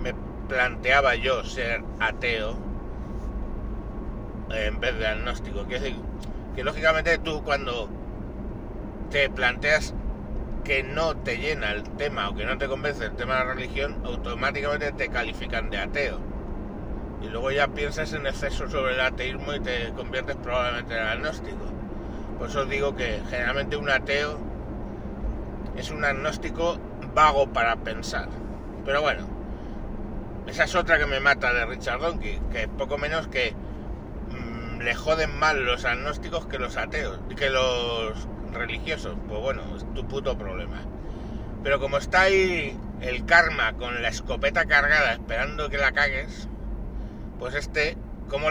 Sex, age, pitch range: male, 60-79, 115-150 Hz